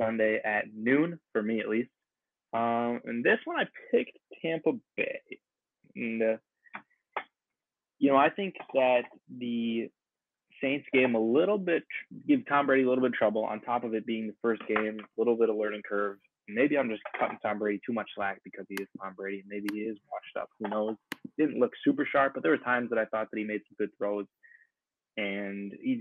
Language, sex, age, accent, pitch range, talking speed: English, male, 20-39, American, 100-120 Hz, 210 wpm